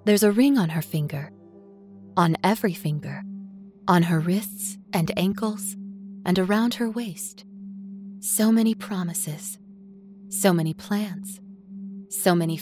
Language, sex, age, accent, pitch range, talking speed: English, female, 20-39, American, 175-245 Hz, 125 wpm